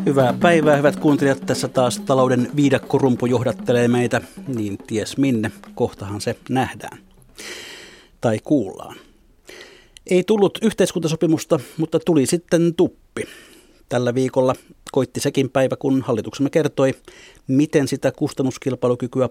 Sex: male